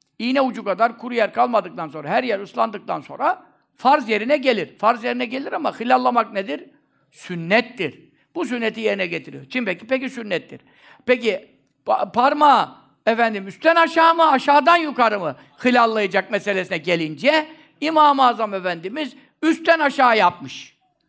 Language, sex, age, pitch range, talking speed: Turkish, male, 60-79, 205-290 Hz, 130 wpm